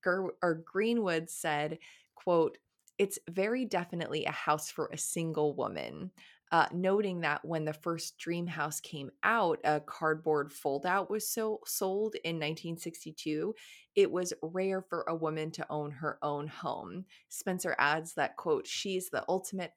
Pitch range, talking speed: 155-185 Hz, 145 wpm